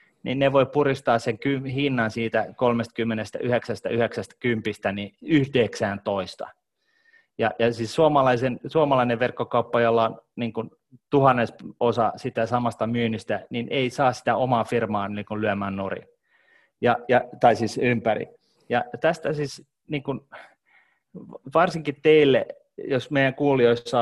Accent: native